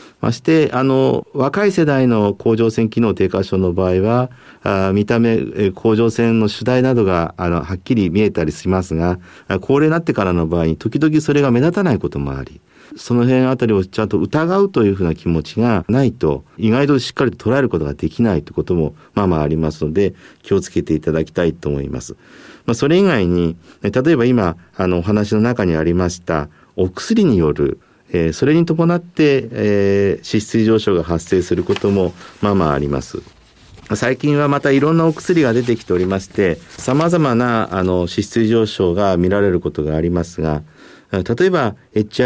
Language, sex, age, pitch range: Japanese, male, 50-69, 90-125 Hz